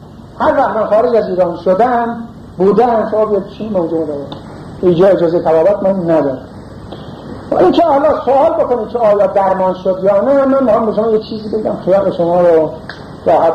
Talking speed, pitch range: 175 wpm, 170-220 Hz